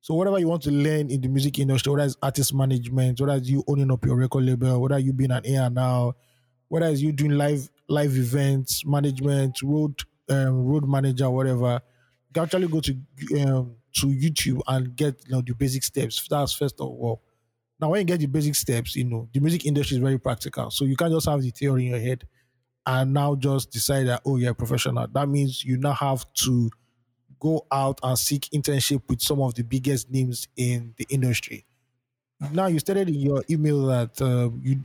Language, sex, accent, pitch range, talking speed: English, male, Nigerian, 125-145 Hz, 210 wpm